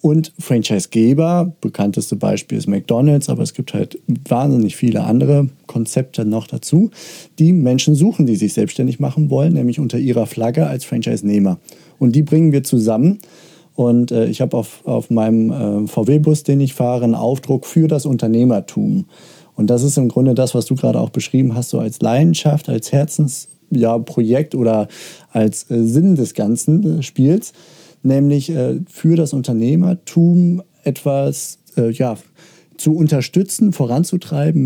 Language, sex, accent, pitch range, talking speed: German, male, German, 120-160 Hz, 150 wpm